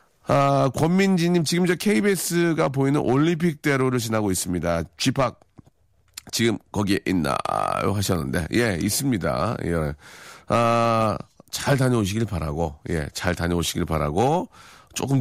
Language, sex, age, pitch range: Korean, male, 40-59, 95-145 Hz